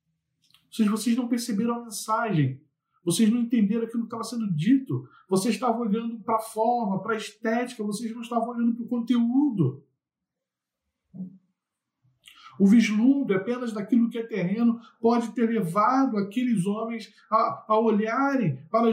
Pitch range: 195-240 Hz